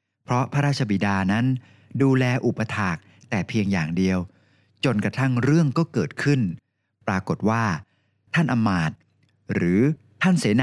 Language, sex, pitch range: Thai, male, 105-140 Hz